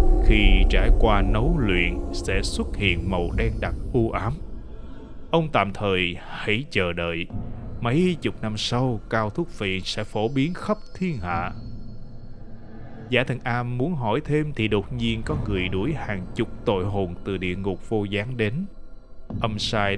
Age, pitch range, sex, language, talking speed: 20-39, 100-130 Hz, male, Vietnamese, 170 wpm